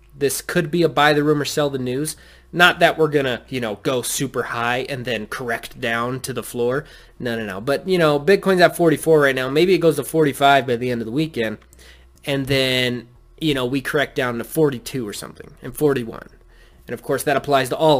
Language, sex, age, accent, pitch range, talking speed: English, male, 20-39, American, 120-170 Hz, 225 wpm